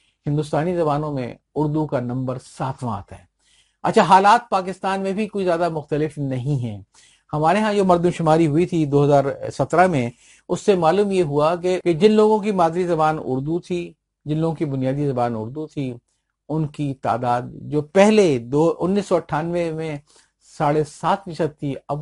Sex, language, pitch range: male, Urdu, 135-175 Hz